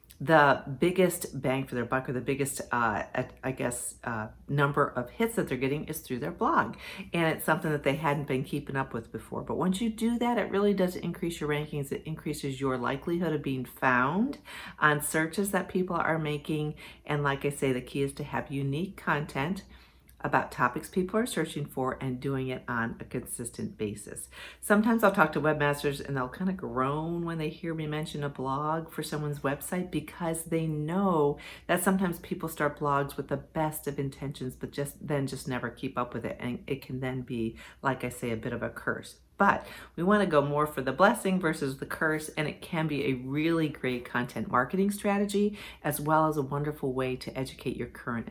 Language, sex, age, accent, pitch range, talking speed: English, female, 50-69, American, 130-170 Hz, 210 wpm